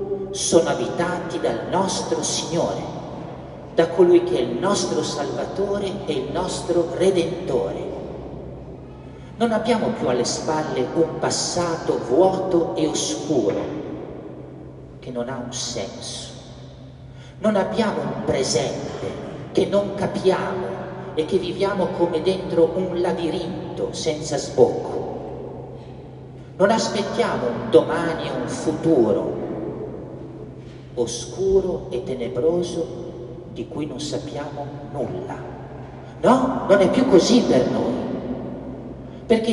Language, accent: Italian, native